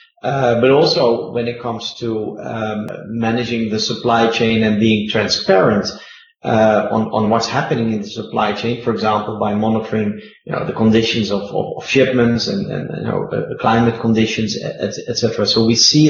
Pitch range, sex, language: 110-120 Hz, male, English